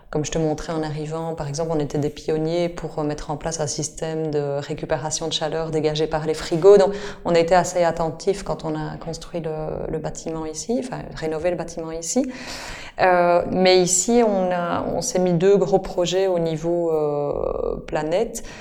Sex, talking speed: female, 195 wpm